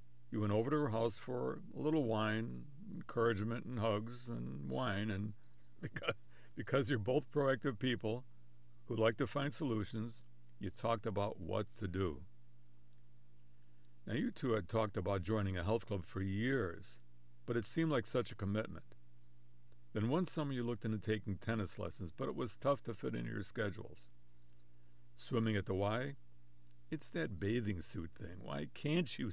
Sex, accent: male, American